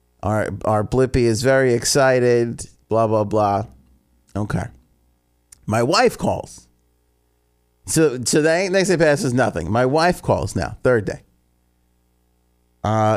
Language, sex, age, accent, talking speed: English, male, 30-49, American, 120 wpm